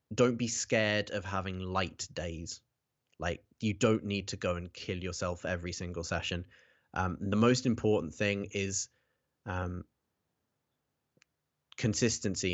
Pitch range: 90-110 Hz